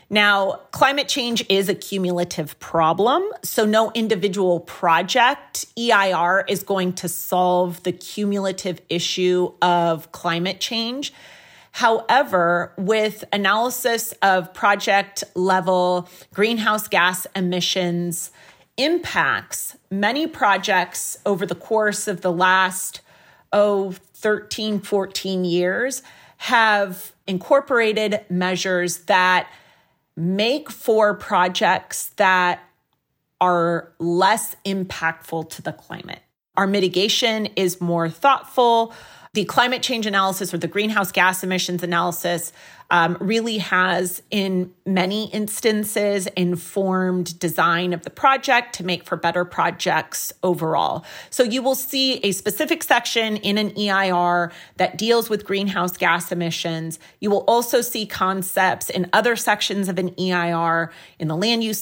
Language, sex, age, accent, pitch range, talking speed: English, female, 30-49, American, 175-210 Hz, 115 wpm